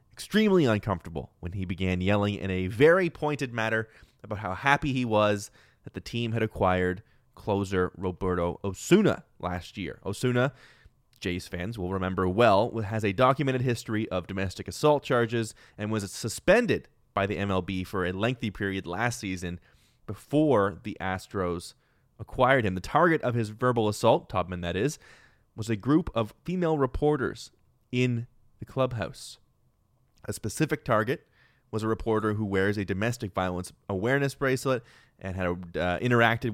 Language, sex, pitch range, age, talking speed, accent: English, male, 95-125 Hz, 30-49, 150 wpm, American